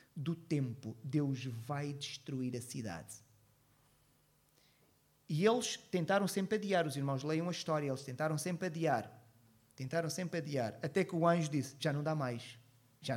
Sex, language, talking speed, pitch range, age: male, Portuguese, 155 wpm, 140-180 Hz, 30-49